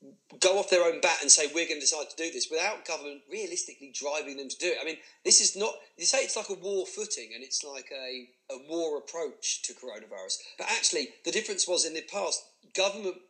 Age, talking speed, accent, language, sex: 40-59, 235 wpm, British, English, male